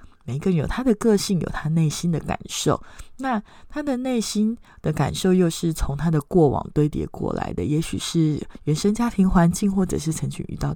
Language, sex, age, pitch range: Chinese, female, 20-39, 150-200 Hz